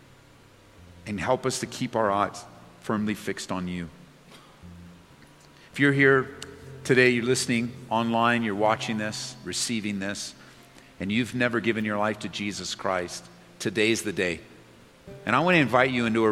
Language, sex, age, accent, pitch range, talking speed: English, male, 50-69, American, 95-135 Hz, 155 wpm